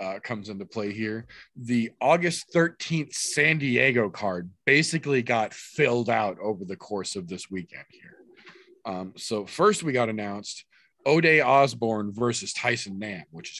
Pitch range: 110-180 Hz